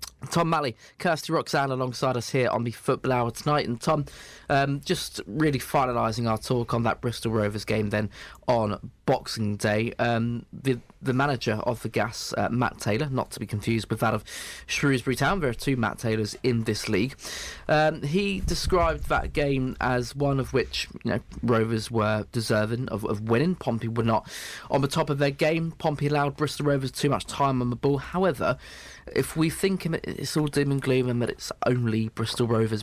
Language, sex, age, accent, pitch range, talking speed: English, male, 20-39, British, 110-140 Hz, 195 wpm